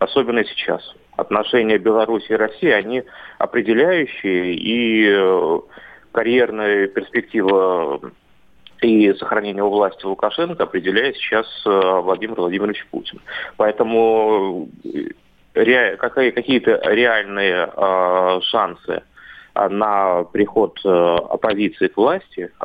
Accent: native